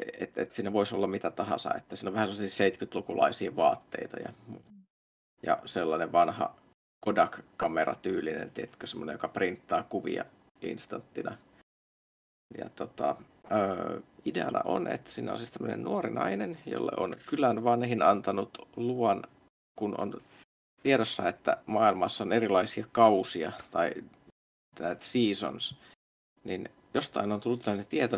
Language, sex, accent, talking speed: Finnish, male, native, 125 wpm